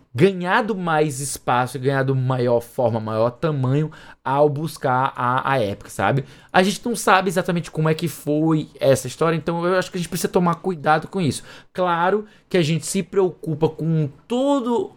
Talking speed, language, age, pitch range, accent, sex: 175 wpm, Portuguese, 20-39, 130-170 Hz, Brazilian, male